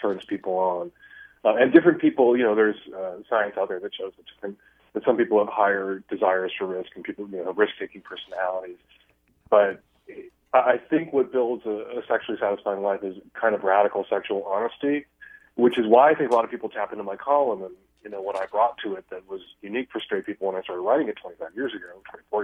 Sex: male